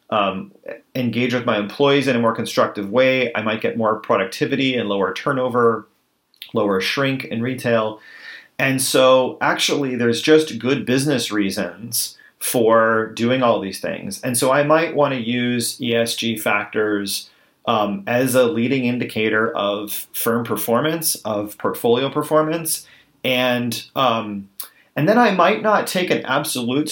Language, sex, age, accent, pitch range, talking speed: English, male, 30-49, American, 110-135 Hz, 145 wpm